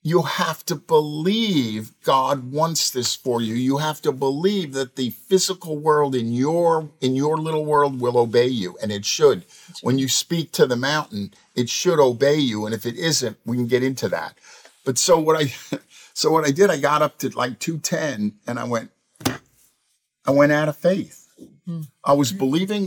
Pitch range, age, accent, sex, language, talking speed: 120-155 Hz, 50-69, American, male, English, 190 wpm